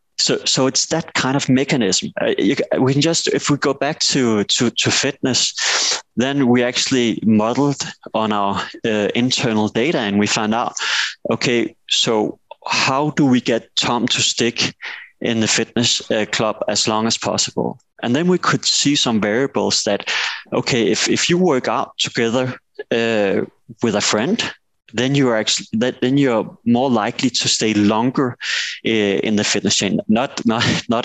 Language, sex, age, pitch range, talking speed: English, male, 30-49, 110-135 Hz, 165 wpm